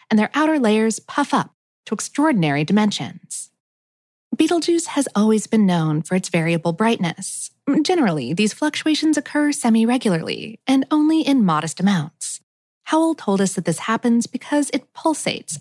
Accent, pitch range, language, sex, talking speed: American, 190-285 Hz, English, female, 140 wpm